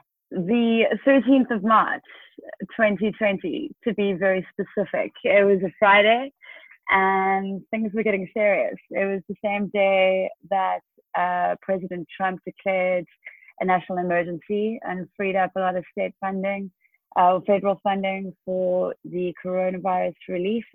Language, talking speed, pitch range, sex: English, 135 wpm, 180-210 Hz, female